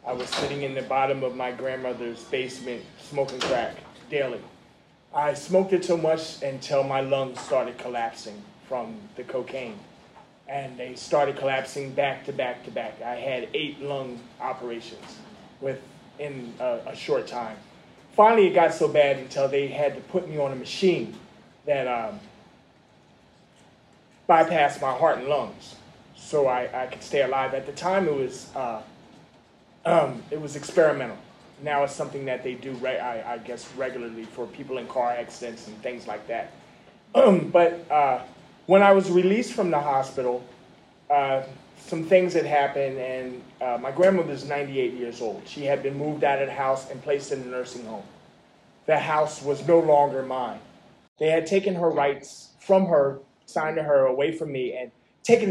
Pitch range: 130-160 Hz